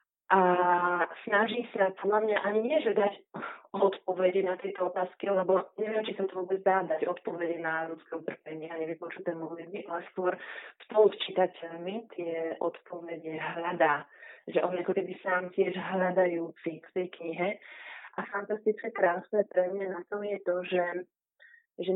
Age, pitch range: 30-49, 175-200 Hz